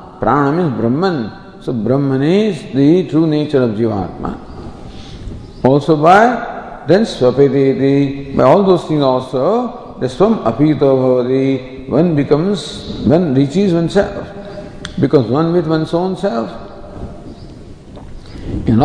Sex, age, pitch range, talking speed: male, 50-69, 125-175 Hz, 110 wpm